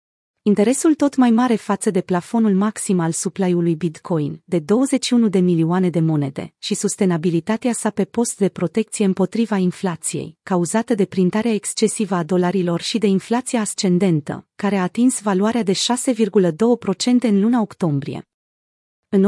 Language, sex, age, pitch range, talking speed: Romanian, female, 30-49, 180-225 Hz, 145 wpm